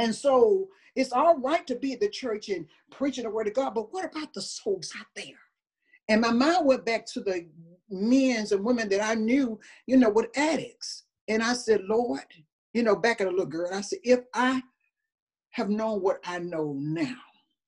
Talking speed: 205 wpm